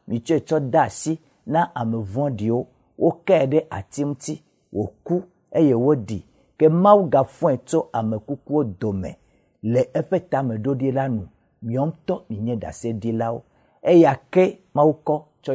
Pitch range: 115-155 Hz